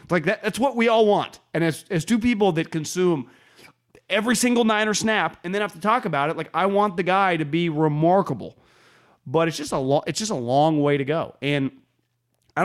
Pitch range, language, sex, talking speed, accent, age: 130-210 Hz, English, male, 225 wpm, American, 30-49